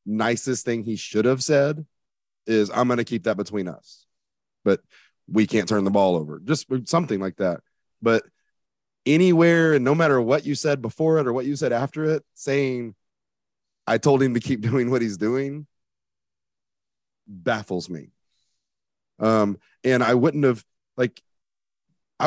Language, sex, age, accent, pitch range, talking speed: English, male, 30-49, American, 110-150 Hz, 160 wpm